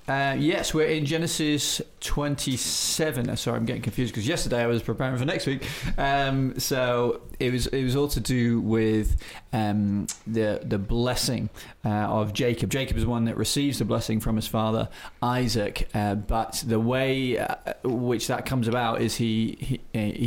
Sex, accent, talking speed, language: male, British, 180 wpm, English